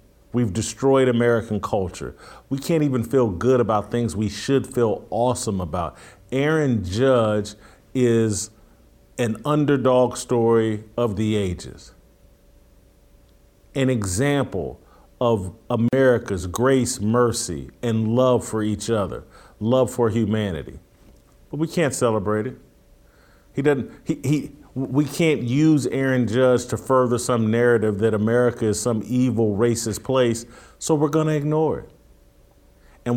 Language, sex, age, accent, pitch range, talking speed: English, male, 40-59, American, 110-135 Hz, 125 wpm